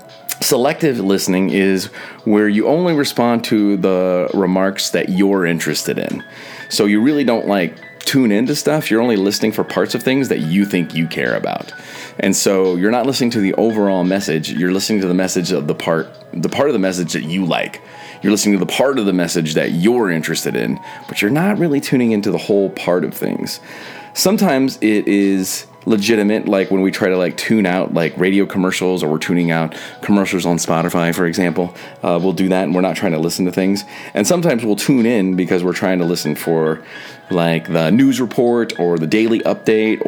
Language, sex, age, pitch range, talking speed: English, male, 30-49, 90-110 Hz, 205 wpm